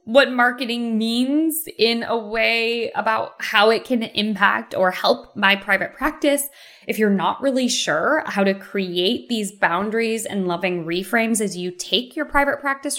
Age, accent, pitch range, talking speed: 20-39, American, 185-235 Hz, 160 wpm